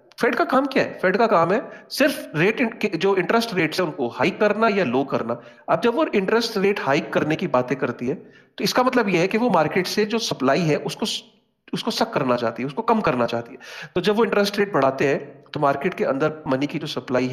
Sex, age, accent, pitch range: male, 40-59, native, 145-200 Hz